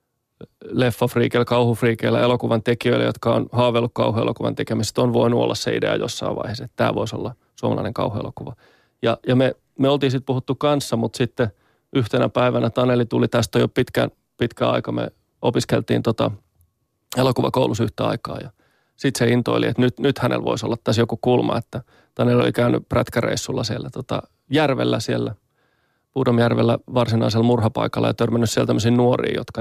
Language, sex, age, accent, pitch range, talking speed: Finnish, male, 30-49, native, 115-130 Hz, 160 wpm